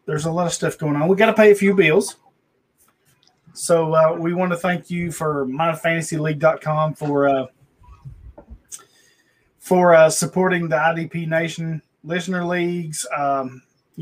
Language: English